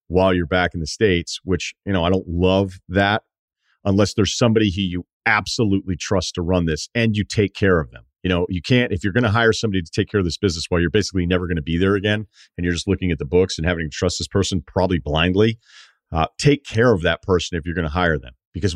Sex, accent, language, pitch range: male, American, English, 80-100 Hz